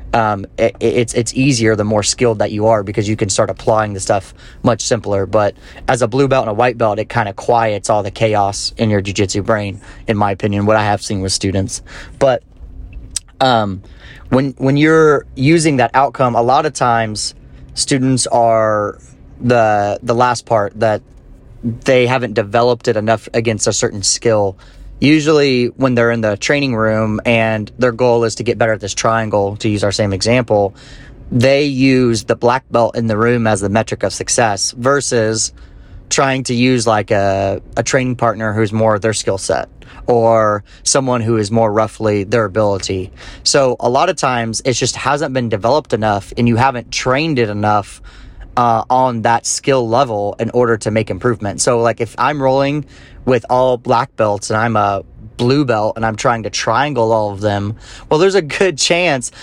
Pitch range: 105-125 Hz